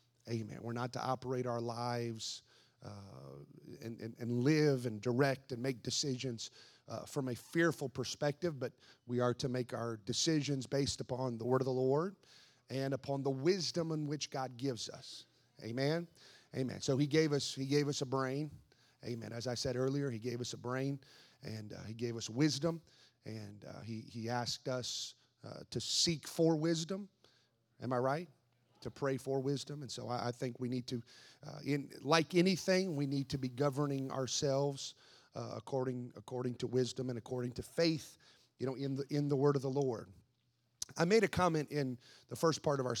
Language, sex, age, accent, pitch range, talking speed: English, male, 30-49, American, 120-145 Hz, 190 wpm